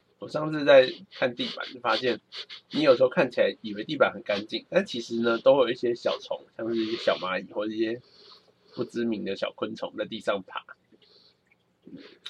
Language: Chinese